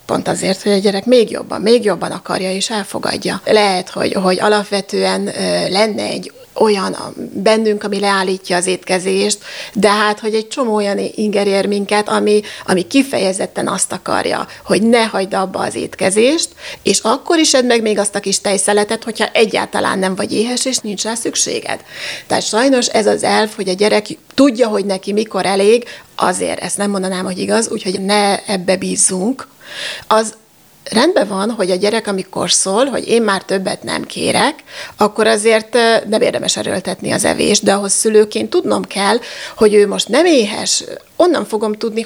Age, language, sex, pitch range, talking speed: 30-49, Hungarian, female, 195-225 Hz, 170 wpm